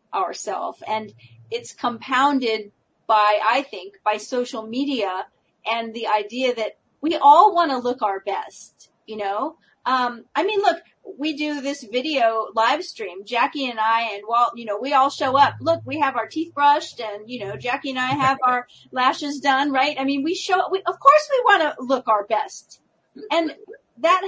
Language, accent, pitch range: English, American, 220-290 Hz